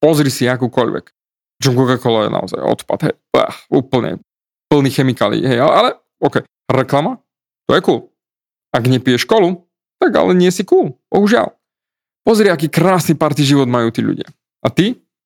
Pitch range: 135-180 Hz